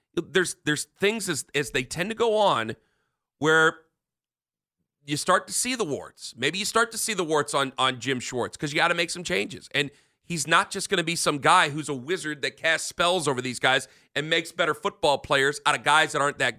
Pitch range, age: 145-190 Hz, 40-59